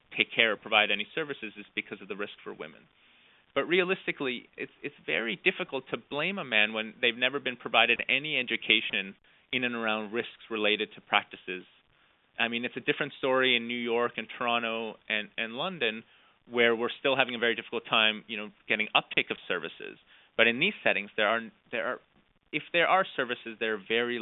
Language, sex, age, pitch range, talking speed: English, male, 30-49, 110-130 Hz, 195 wpm